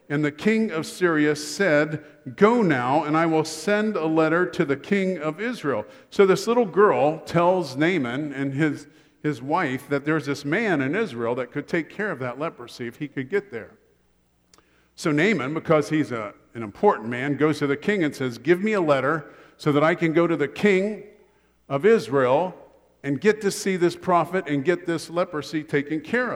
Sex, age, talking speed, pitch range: male, 50-69, 200 wpm, 145-180 Hz